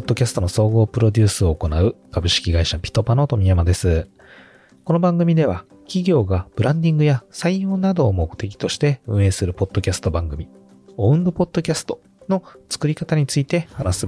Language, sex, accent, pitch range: Japanese, male, native, 90-150 Hz